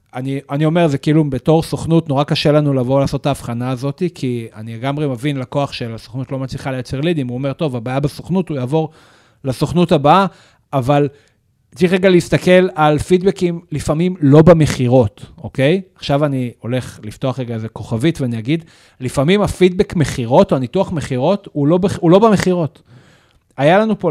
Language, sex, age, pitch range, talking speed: Hebrew, male, 40-59, 125-170 Hz, 165 wpm